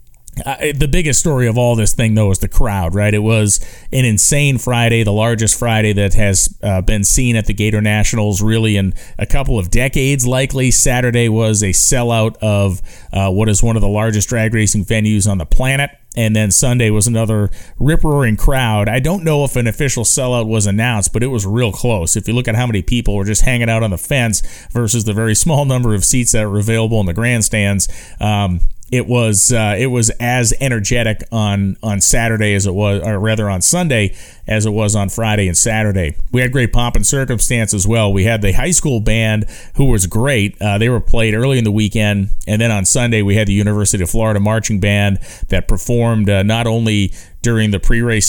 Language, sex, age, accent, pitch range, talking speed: English, male, 30-49, American, 100-120 Hz, 215 wpm